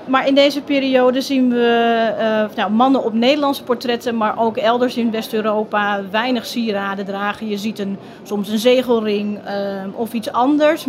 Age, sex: 30-49, female